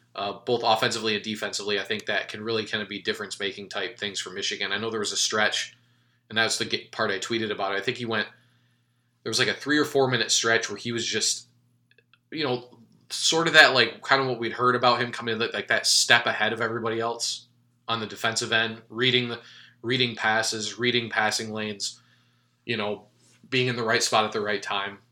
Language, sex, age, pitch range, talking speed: English, male, 20-39, 110-125 Hz, 215 wpm